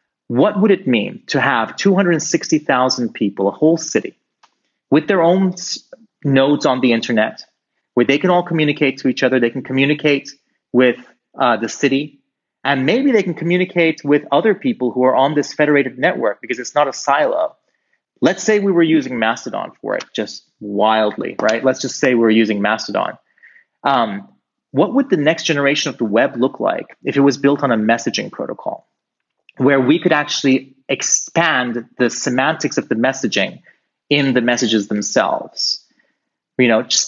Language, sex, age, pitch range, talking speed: English, male, 30-49, 120-165 Hz, 170 wpm